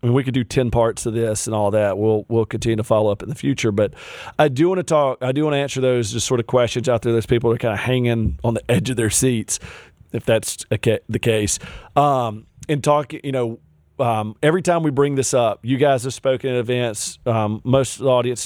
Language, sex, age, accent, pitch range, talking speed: English, male, 40-59, American, 115-135 Hz, 265 wpm